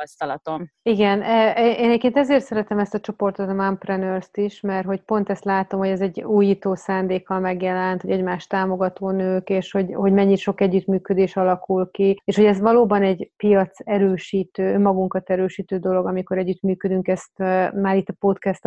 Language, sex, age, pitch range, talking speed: Hungarian, female, 30-49, 190-205 Hz, 165 wpm